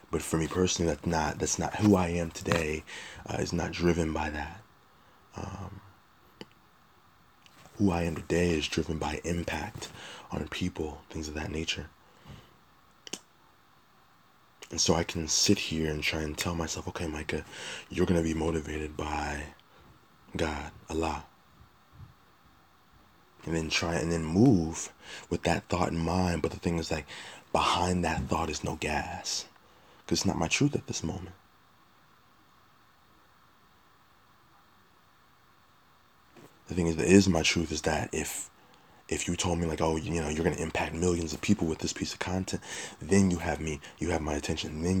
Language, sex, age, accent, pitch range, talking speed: English, male, 20-39, American, 80-90 Hz, 165 wpm